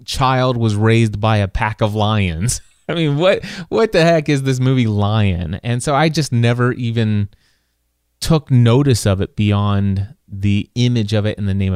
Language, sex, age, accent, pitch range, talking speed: English, male, 30-49, American, 100-125 Hz, 185 wpm